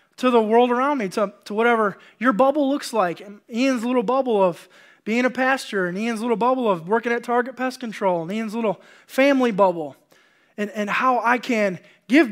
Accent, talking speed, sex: American, 200 wpm, male